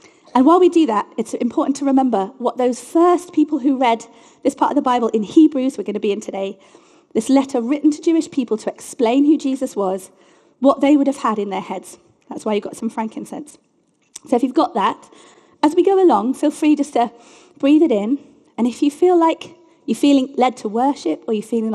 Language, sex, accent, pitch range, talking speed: English, female, British, 235-310 Hz, 225 wpm